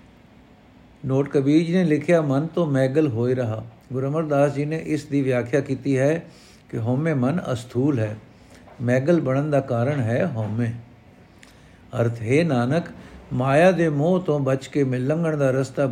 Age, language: 60-79, Punjabi